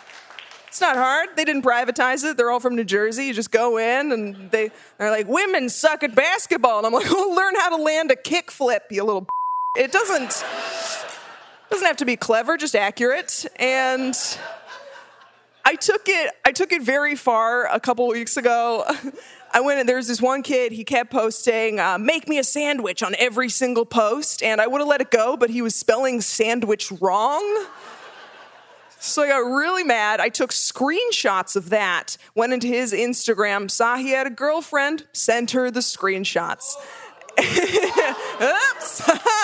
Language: English